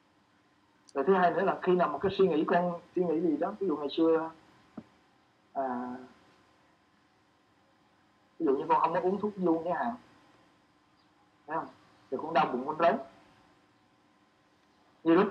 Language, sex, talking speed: Vietnamese, male, 165 wpm